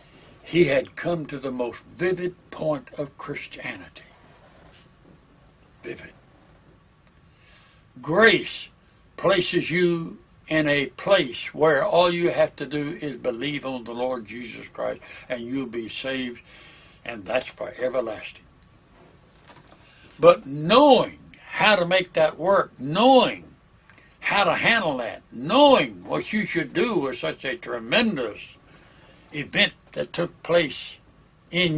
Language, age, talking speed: English, 60-79, 120 wpm